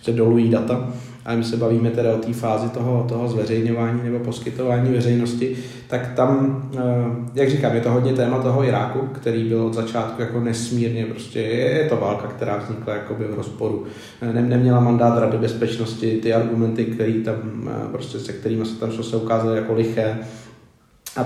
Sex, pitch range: male, 110-120 Hz